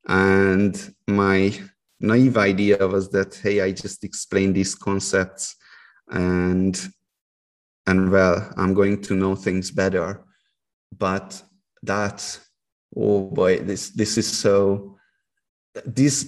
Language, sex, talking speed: English, male, 110 wpm